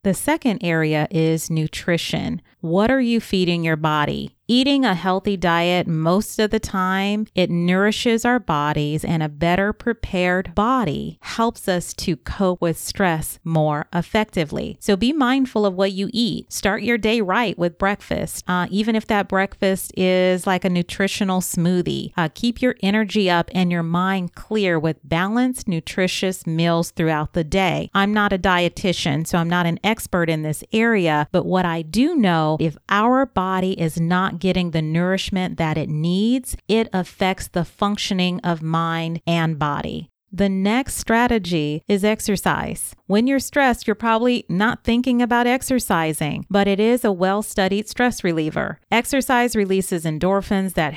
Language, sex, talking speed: English, female, 160 wpm